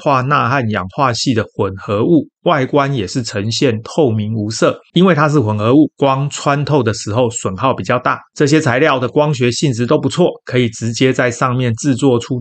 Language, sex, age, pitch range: Chinese, male, 30-49, 115-145 Hz